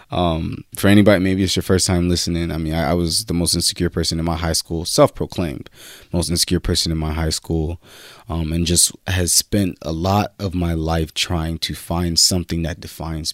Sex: male